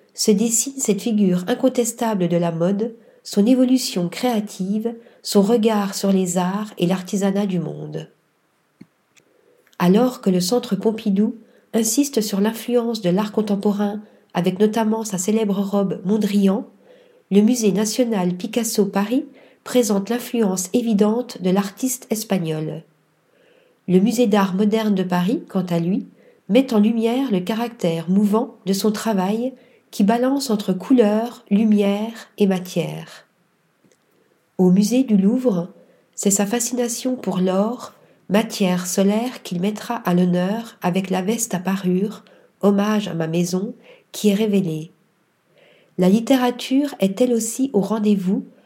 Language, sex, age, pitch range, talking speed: French, female, 40-59, 190-235 Hz, 130 wpm